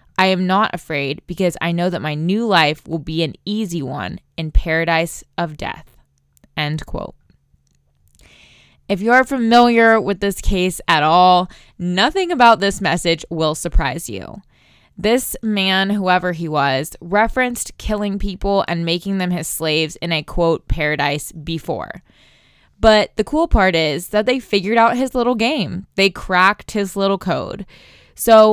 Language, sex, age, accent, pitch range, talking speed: English, female, 20-39, American, 150-210 Hz, 155 wpm